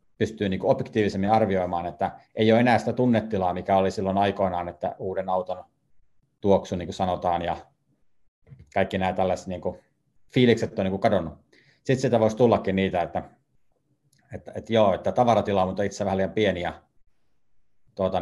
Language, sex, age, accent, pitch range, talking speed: Finnish, male, 30-49, native, 95-115 Hz, 160 wpm